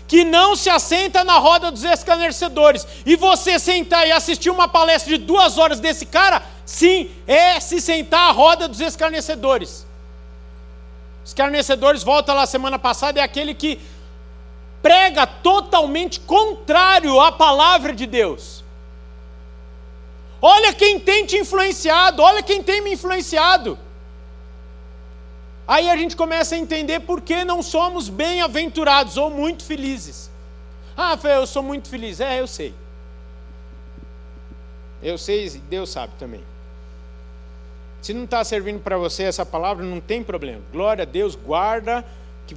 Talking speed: 135 wpm